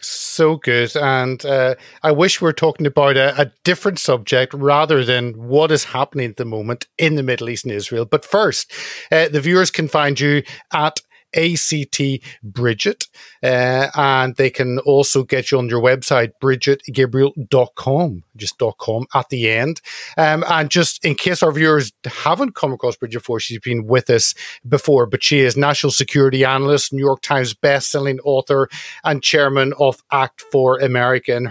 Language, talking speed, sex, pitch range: English, 175 wpm, male, 130-155 Hz